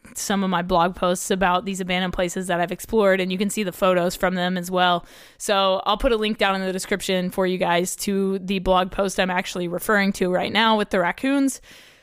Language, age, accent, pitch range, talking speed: English, 20-39, American, 185-210 Hz, 235 wpm